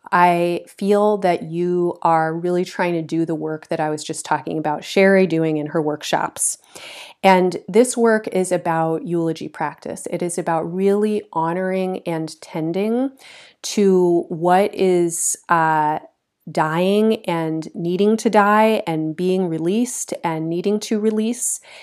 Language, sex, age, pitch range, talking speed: English, female, 30-49, 160-195 Hz, 145 wpm